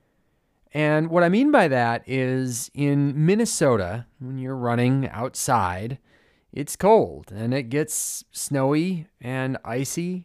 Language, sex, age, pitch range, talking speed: English, male, 30-49, 115-155 Hz, 125 wpm